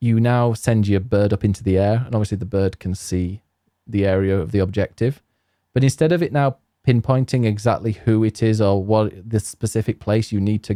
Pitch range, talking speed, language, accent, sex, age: 100-120 Hz, 210 wpm, English, British, male, 20-39